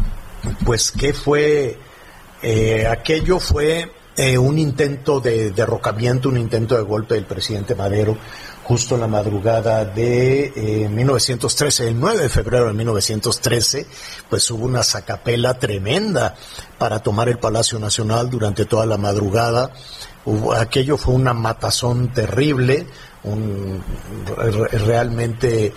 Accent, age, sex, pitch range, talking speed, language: Mexican, 50-69, male, 110-130 Hz, 125 wpm, Spanish